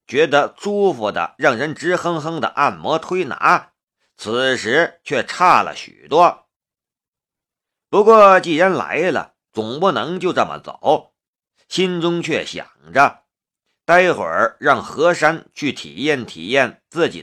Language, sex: Chinese, male